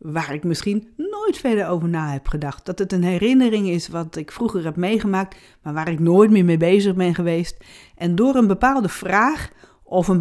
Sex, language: female, Dutch